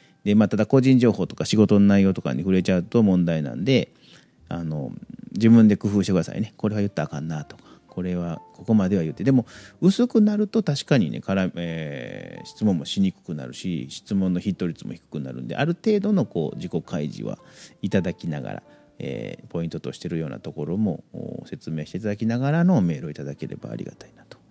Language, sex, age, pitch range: Japanese, male, 40-59, 85-115 Hz